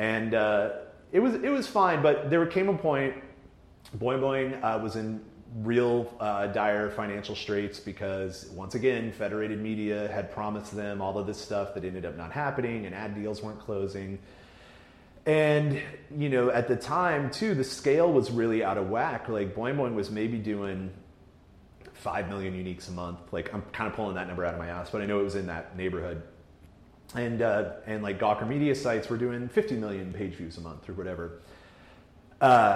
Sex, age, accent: male, 30-49, American